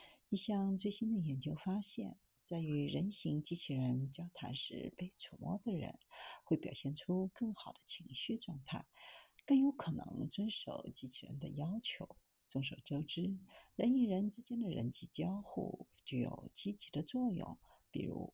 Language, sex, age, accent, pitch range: Chinese, female, 50-69, native, 150-210 Hz